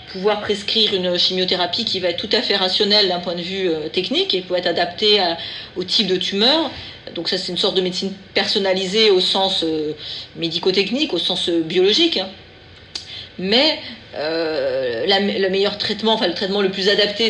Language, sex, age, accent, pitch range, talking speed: French, female, 40-59, French, 180-215 Hz, 185 wpm